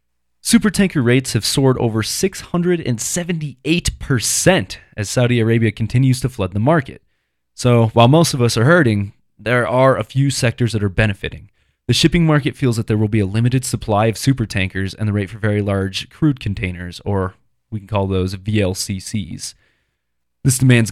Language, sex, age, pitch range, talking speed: English, male, 20-39, 95-125 Hz, 165 wpm